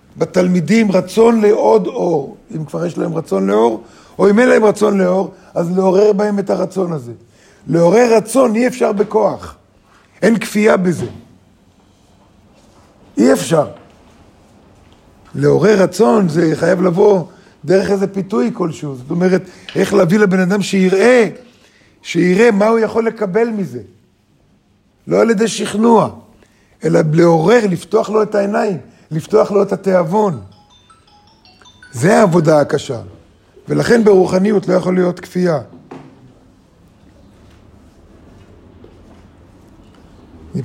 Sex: male